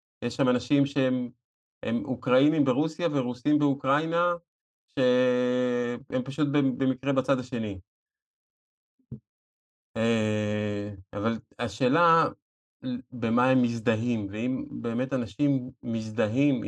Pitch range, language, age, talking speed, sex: 110-135 Hz, Hebrew, 30-49, 80 wpm, male